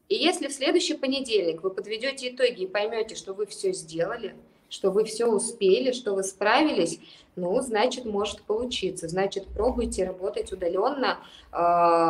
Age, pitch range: 20-39, 190-250 Hz